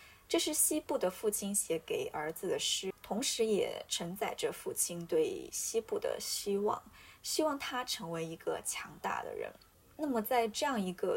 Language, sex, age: Chinese, female, 20-39